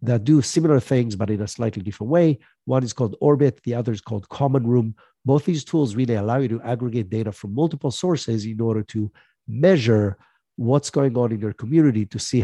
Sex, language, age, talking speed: male, English, 50-69, 210 wpm